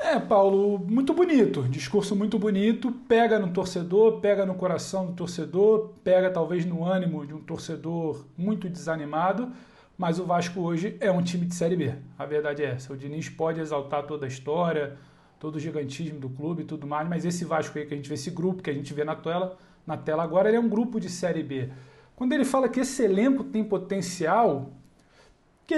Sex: male